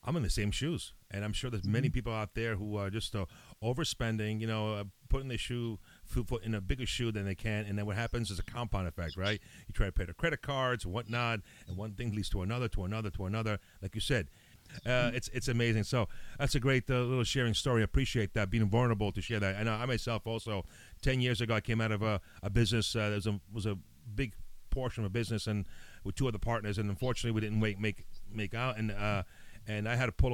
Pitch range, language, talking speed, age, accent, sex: 105-120 Hz, English, 255 wpm, 40-59, American, male